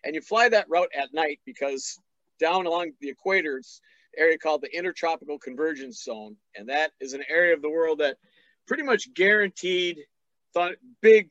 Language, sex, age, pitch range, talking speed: English, male, 50-69, 140-175 Hz, 175 wpm